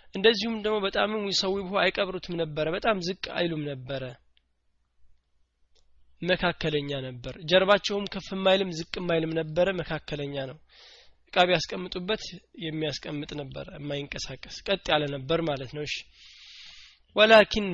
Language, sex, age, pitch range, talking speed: Amharic, male, 20-39, 150-190 Hz, 110 wpm